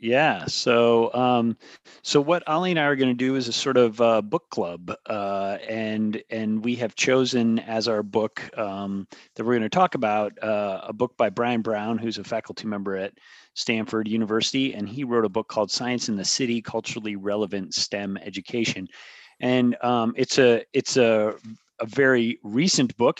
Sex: male